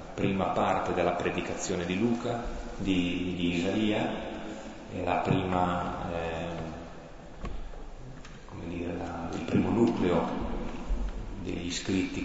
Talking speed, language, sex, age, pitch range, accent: 105 wpm, Italian, male, 30-49, 85-95 Hz, native